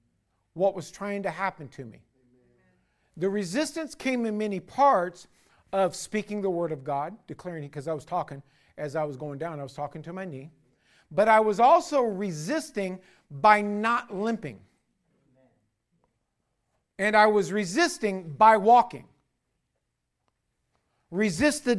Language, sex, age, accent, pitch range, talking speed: English, male, 50-69, American, 170-235 Hz, 145 wpm